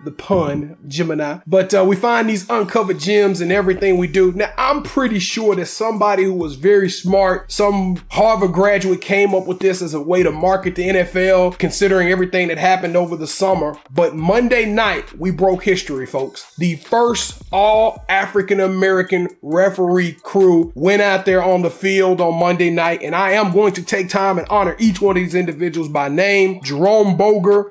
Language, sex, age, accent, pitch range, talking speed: English, male, 30-49, American, 180-205 Hz, 185 wpm